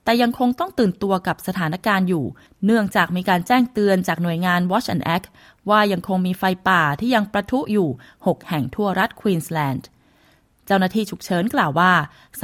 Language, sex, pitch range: Thai, female, 175-225 Hz